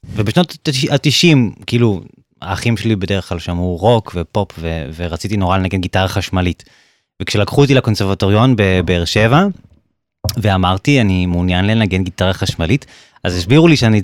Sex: male